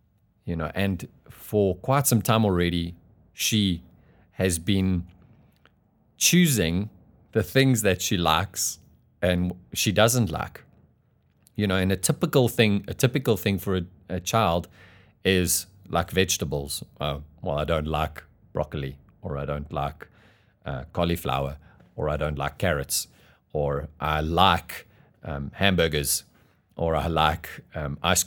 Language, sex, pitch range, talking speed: English, male, 75-100 Hz, 130 wpm